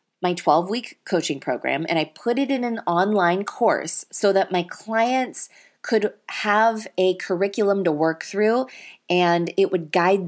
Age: 20-39